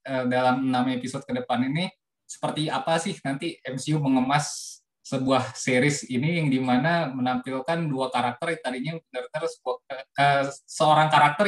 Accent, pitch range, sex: native, 130-155 Hz, male